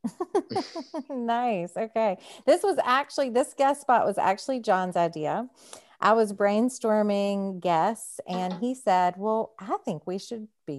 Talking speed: 140 wpm